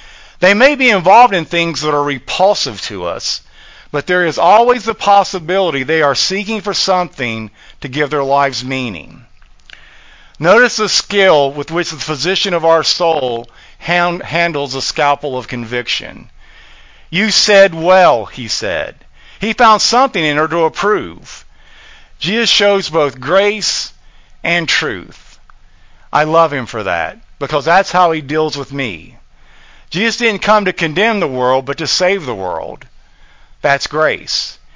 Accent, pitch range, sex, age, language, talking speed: American, 145-200 Hz, male, 50-69, English, 150 wpm